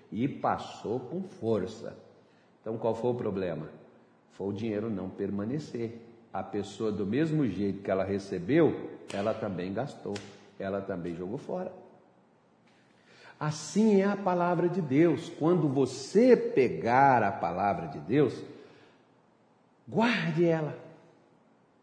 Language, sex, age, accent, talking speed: Portuguese, male, 50-69, Brazilian, 120 wpm